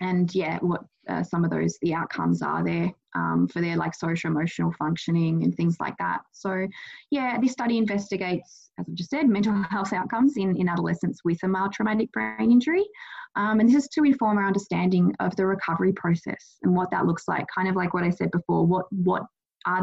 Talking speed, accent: 210 wpm, Australian